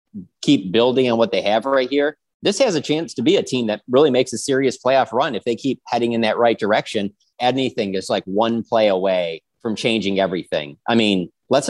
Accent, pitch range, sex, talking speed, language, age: American, 100-125 Hz, male, 220 wpm, English, 30-49